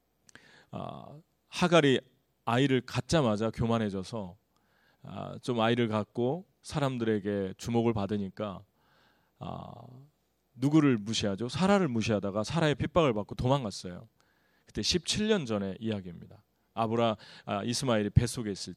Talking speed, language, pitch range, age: 90 wpm, English, 105-150 Hz, 40-59